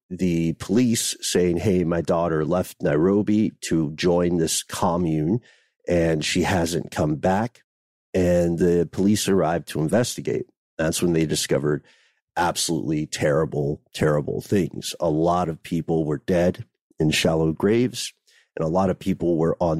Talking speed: 140 wpm